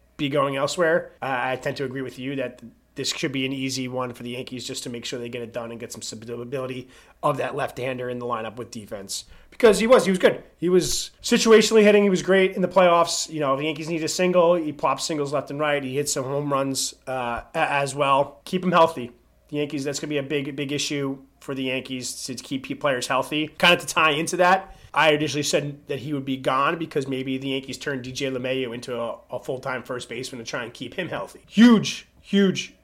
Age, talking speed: 30-49, 240 wpm